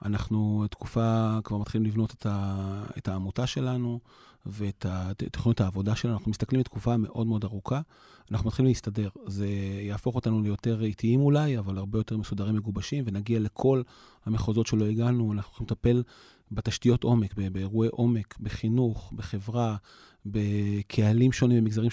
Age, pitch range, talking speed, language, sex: 30-49, 110-130 Hz, 120 wpm, Hebrew, male